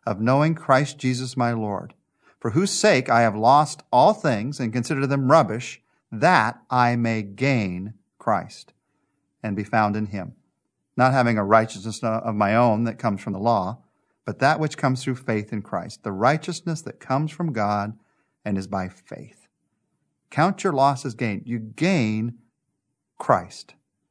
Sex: male